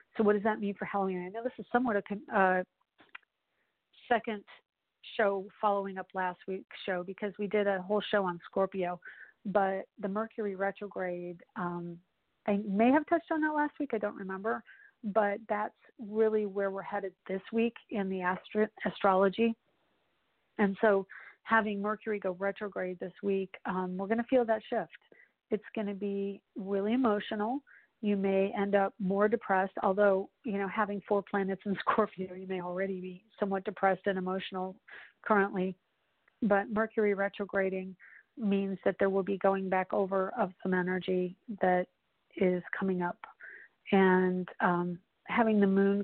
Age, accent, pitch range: 40-59, American, 190-215 Hz